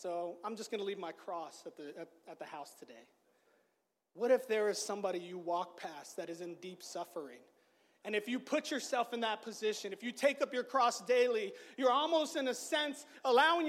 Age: 30-49